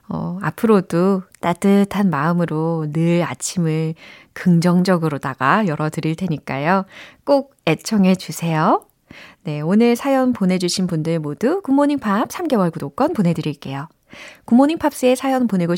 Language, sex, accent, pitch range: Korean, female, native, 170-270 Hz